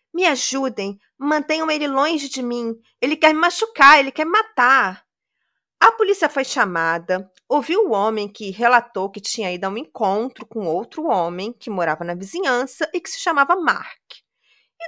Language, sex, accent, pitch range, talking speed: Portuguese, female, Brazilian, 205-330 Hz, 175 wpm